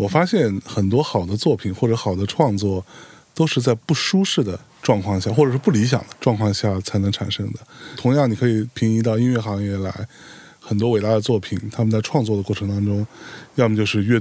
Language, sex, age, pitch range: Chinese, male, 20-39, 100-120 Hz